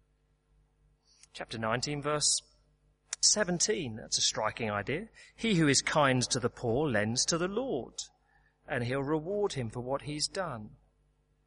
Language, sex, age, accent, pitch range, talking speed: English, male, 40-59, British, 110-150 Hz, 140 wpm